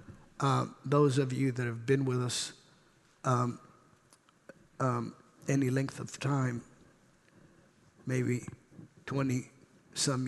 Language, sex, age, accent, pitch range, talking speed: English, male, 50-69, American, 125-150 Hz, 105 wpm